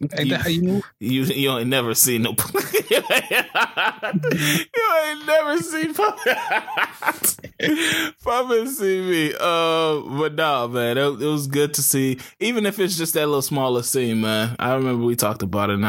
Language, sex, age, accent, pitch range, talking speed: English, male, 20-39, American, 110-140 Hz, 155 wpm